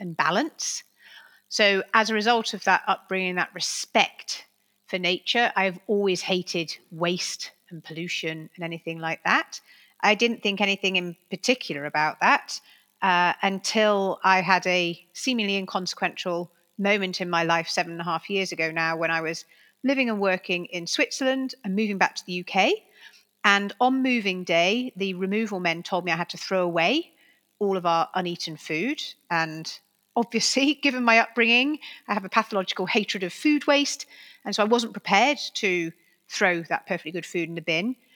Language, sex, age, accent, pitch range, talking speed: English, female, 40-59, British, 175-220 Hz, 170 wpm